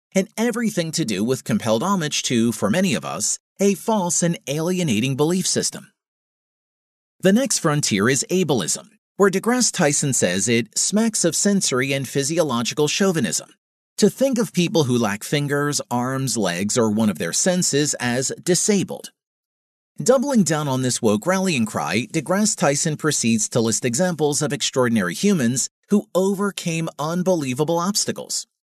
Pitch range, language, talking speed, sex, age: 130-195 Hz, English, 145 wpm, male, 40-59